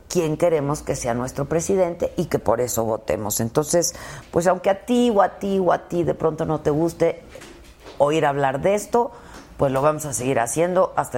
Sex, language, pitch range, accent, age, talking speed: female, Spanish, 125-175 Hz, Mexican, 40-59, 205 wpm